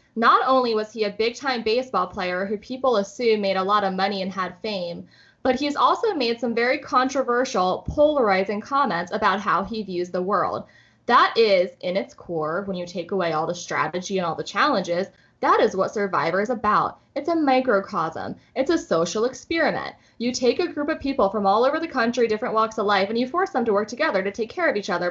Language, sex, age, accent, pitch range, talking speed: English, female, 10-29, American, 190-260 Hz, 220 wpm